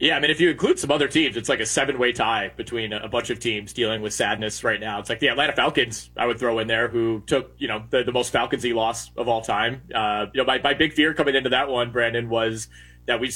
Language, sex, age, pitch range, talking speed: English, male, 30-49, 120-145 Hz, 275 wpm